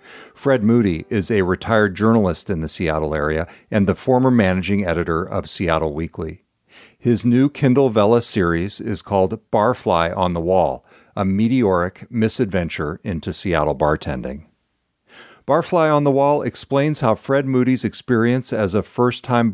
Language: English